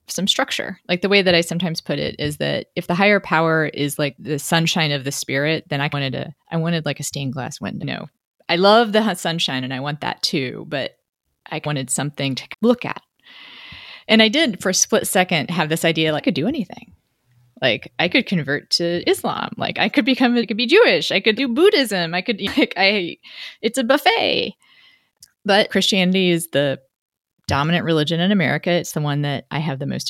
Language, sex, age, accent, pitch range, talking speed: English, female, 30-49, American, 150-200 Hz, 215 wpm